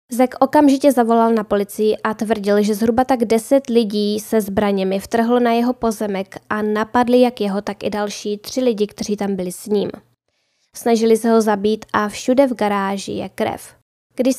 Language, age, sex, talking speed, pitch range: Czech, 10-29, female, 180 wpm, 205-245 Hz